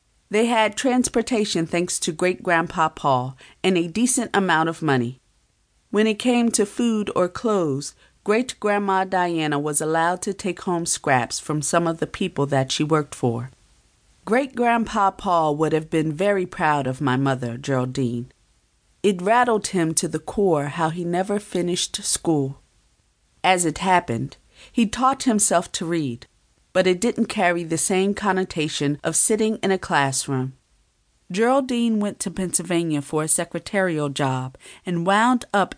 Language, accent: English, American